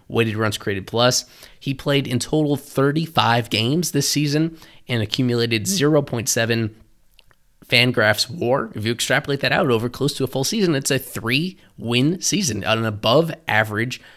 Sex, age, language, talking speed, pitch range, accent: male, 20-39, English, 160 wpm, 110-135 Hz, American